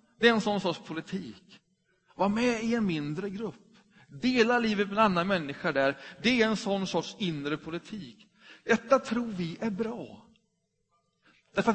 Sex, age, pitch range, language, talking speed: male, 30-49, 170-235 Hz, Swedish, 160 wpm